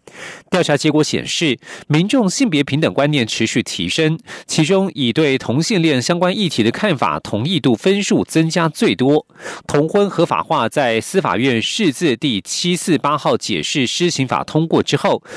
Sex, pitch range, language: male, 130-175 Hz, Russian